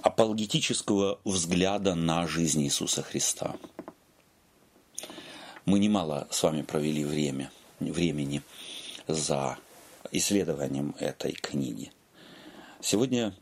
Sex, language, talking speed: male, Russian, 80 wpm